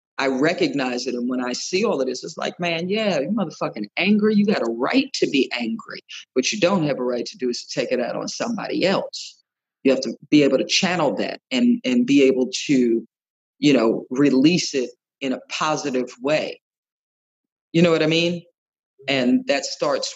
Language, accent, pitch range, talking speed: English, American, 125-175 Hz, 205 wpm